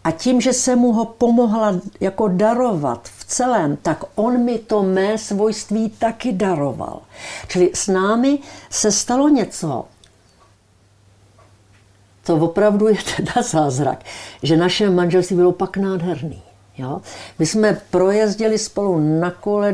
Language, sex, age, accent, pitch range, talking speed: Czech, female, 60-79, native, 125-200 Hz, 130 wpm